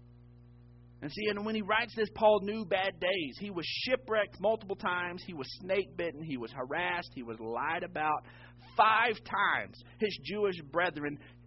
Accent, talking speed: American, 165 wpm